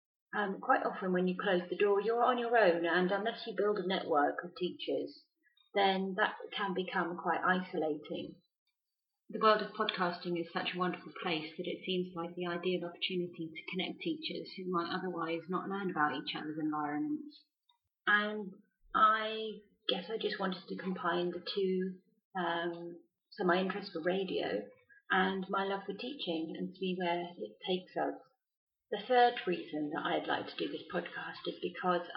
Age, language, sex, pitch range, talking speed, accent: 30-49, English, female, 175-215 Hz, 175 wpm, British